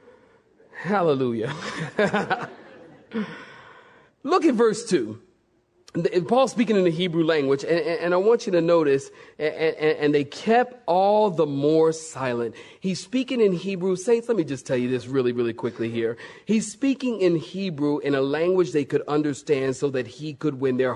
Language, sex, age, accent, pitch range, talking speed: English, male, 40-59, American, 155-230 Hz, 170 wpm